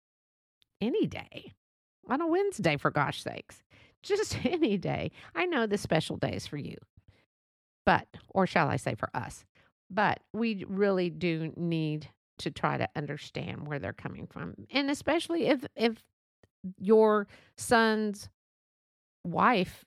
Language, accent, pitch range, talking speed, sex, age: English, American, 150-225 Hz, 140 wpm, female, 50-69